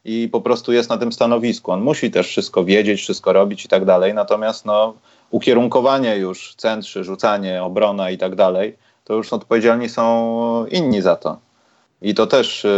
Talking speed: 175 wpm